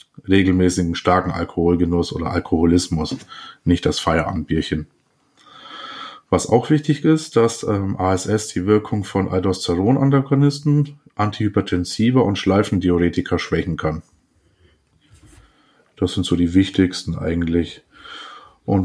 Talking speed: 100 wpm